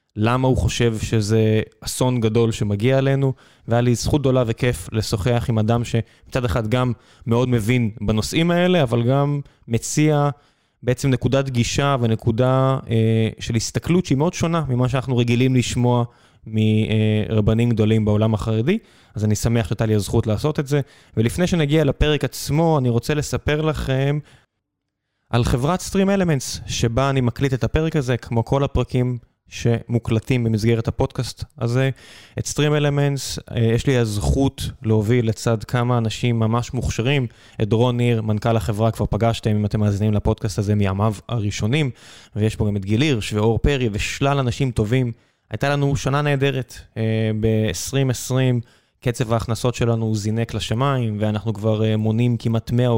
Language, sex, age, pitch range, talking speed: Hebrew, male, 20-39, 110-135 Hz, 145 wpm